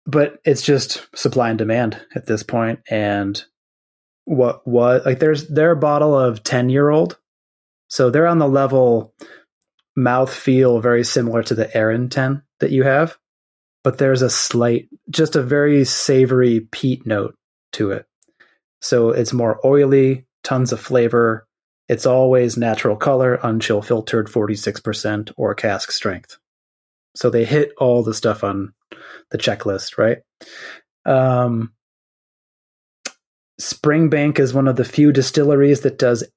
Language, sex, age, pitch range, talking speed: English, male, 30-49, 110-135 Hz, 140 wpm